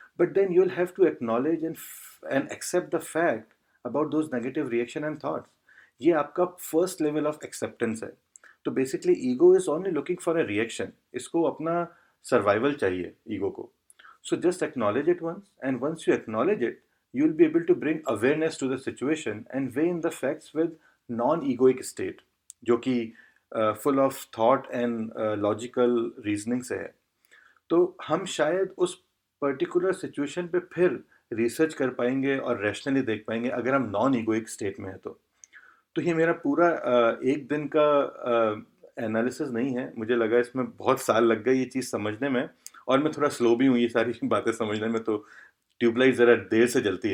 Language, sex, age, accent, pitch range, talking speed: Hindi, male, 40-59, native, 120-170 Hz, 180 wpm